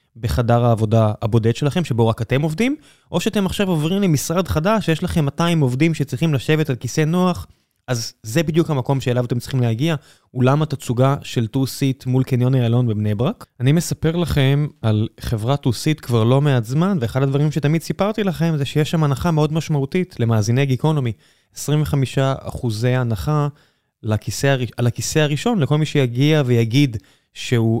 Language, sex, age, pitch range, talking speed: Hebrew, male, 20-39, 115-160 Hz, 160 wpm